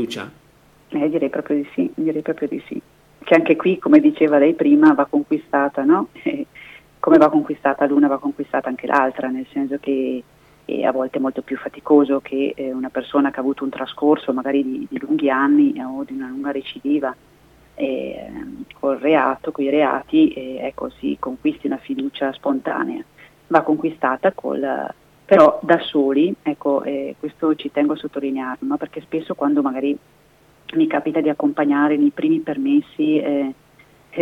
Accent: native